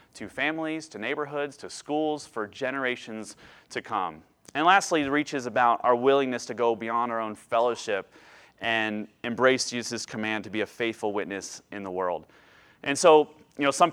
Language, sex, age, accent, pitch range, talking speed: English, male, 30-49, American, 115-140 Hz, 170 wpm